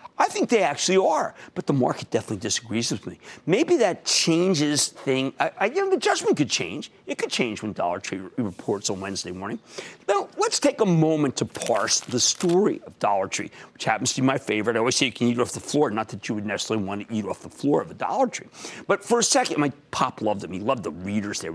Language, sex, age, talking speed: English, male, 50-69, 250 wpm